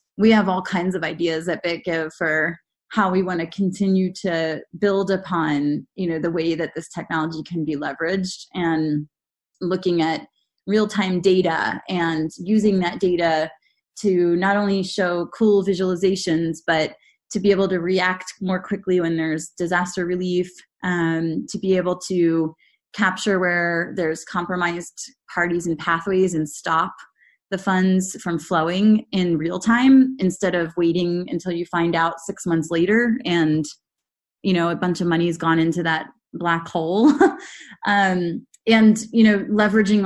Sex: female